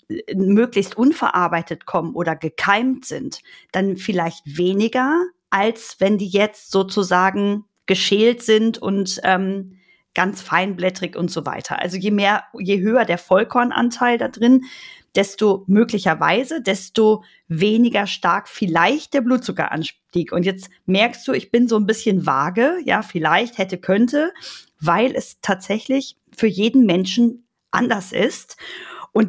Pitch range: 190-245 Hz